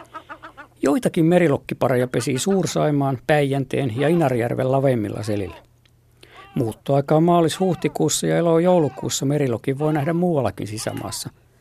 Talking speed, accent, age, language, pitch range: 100 wpm, native, 50-69, Finnish, 120-160 Hz